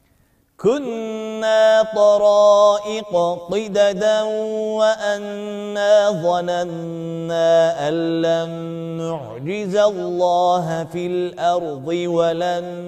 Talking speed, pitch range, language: 55 wpm, 175-220 Hz, Turkish